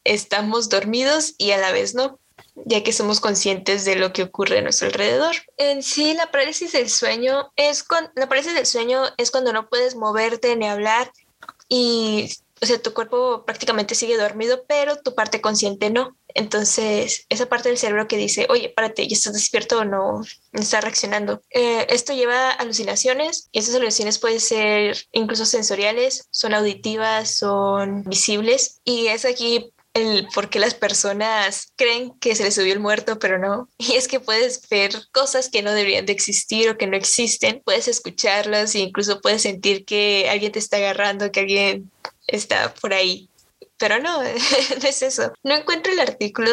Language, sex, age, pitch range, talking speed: English, female, 10-29, 210-255 Hz, 180 wpm